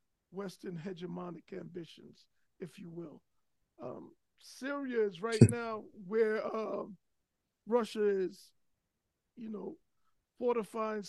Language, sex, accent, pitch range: English, male, American, 210-260 Hz